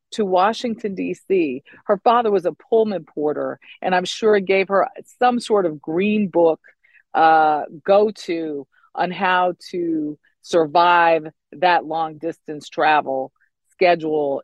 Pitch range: 160-210 Hz